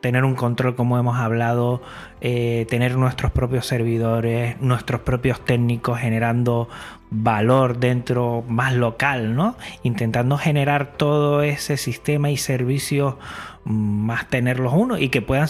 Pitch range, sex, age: 120-160 Hz, male, 30-49